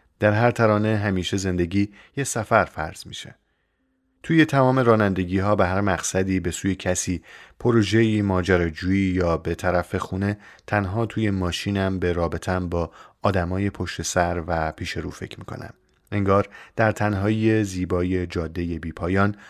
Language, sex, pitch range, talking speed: Persian, male, 90-105 Hz, 145 wpm